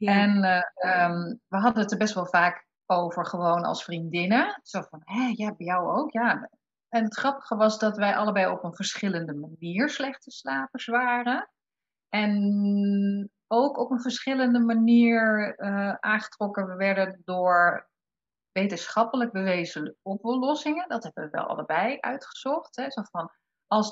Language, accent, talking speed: Dutch, Dutch, 140 wpm